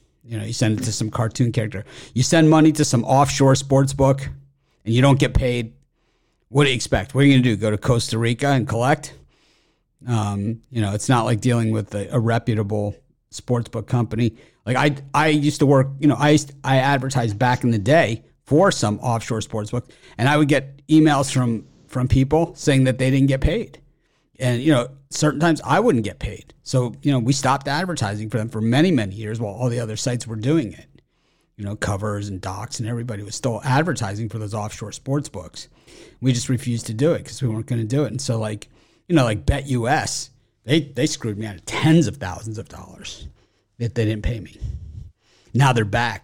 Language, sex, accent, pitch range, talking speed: English, male, American, 110-140 Hz, 220 wpm